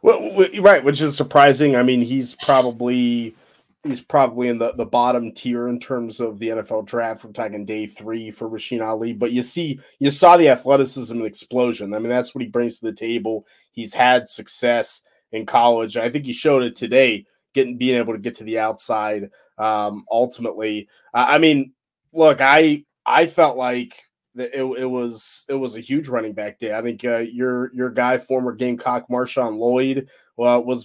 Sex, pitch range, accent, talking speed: male, 115-130 Hz, American, 190 wpm